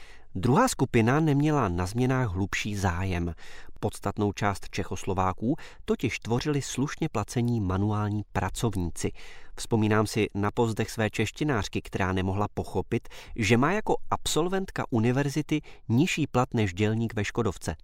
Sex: male